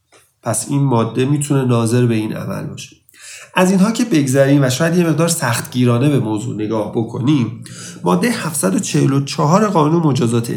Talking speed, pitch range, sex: 150 wpm, 115-155 Hz, male